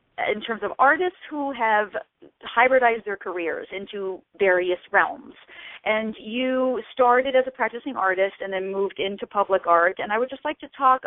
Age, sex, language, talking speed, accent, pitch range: 40-59, female, English, 175 wpm, American, 195-250 Hz